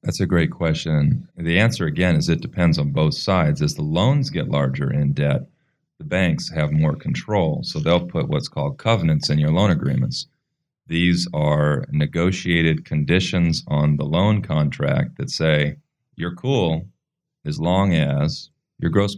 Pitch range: 75-115 Hz